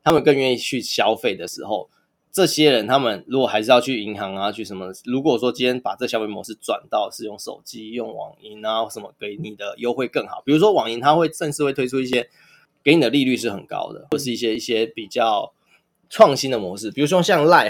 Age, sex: 20-39, male